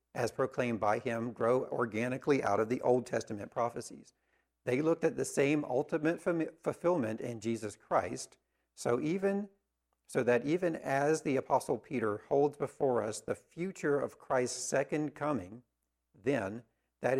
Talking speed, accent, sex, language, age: 150 wpm, American, male, English, 50-69